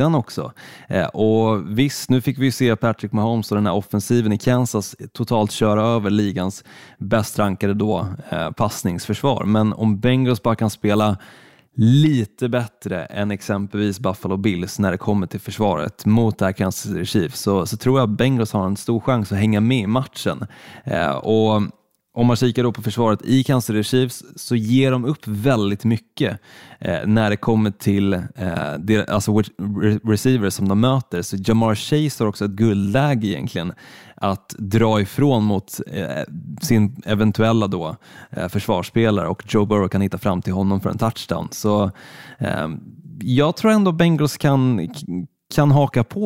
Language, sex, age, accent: Swedish, male, 20-39, native